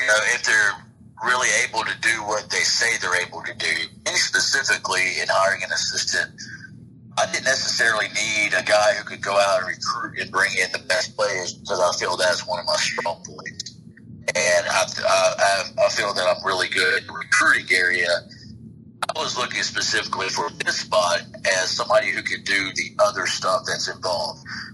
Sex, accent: male, American